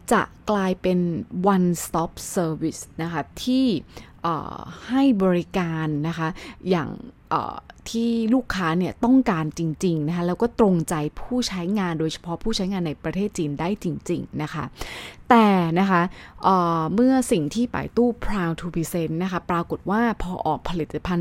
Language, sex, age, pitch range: Thai, female, 20-39, 160-225 Hz